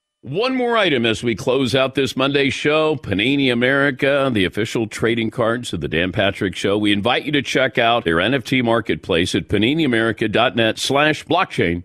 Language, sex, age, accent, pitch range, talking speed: English, male, 50-69, American, 115-150 Hz, 170 wpm